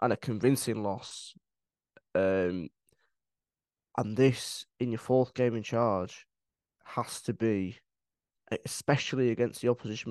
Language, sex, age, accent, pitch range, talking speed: English, male, 10-29, British, 100-125 Hz, 120 wpm